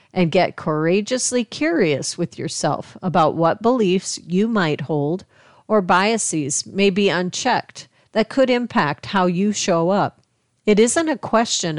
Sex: female